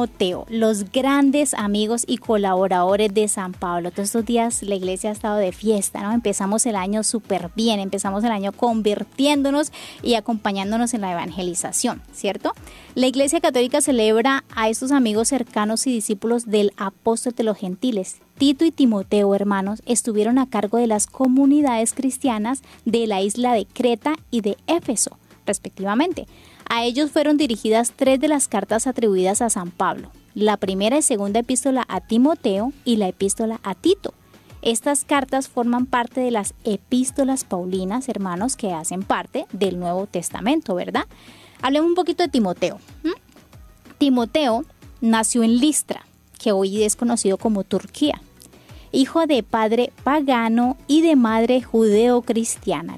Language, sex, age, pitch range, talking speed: Spanish, female, 20-39, 205-260 Hz, 150 wpm